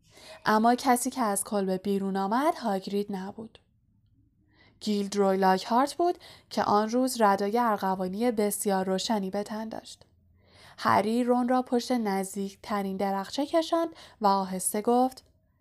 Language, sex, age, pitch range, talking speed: Persian, female, 10-29, 195-250 Hz, 130 wpm